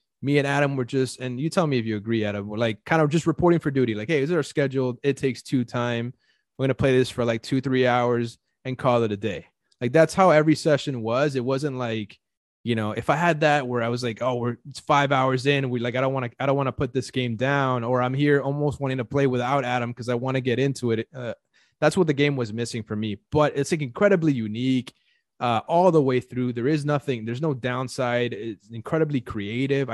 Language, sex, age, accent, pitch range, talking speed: English, male, 20-39, American, 120-150 Hz, 260 wpm